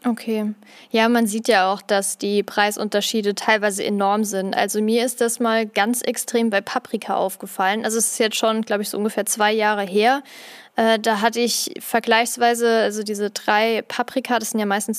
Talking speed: 185 wpm